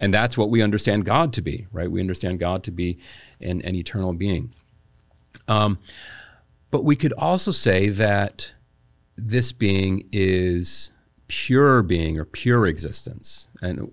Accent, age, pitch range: American, 40-59, 90-115 Hz